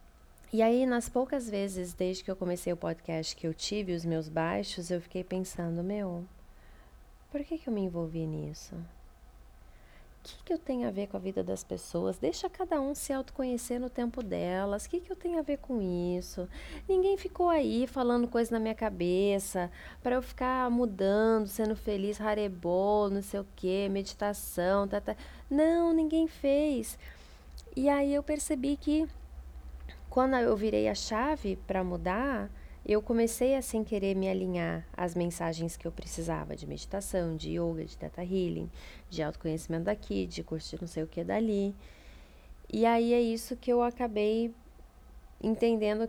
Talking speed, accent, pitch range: 170 wpm, Brazilian, 160-230 Hz